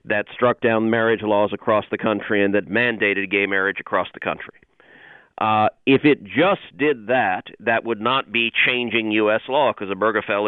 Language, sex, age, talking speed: English, male, 50-69, 180 wpm